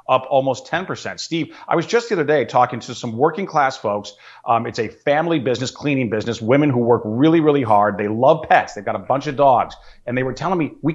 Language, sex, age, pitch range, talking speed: English, male, 40-59, 105-145 Hz, 240 wpm